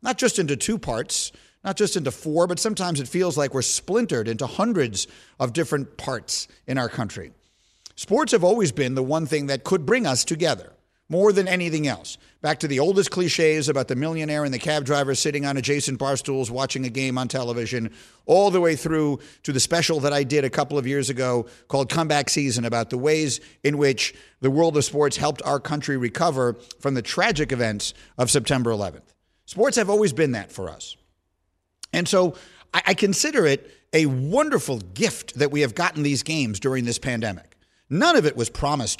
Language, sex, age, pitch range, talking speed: English, male, 50-69, 130-170 Hz, 200 wpm